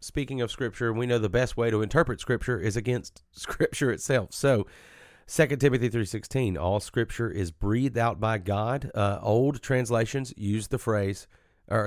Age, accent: 40-59, American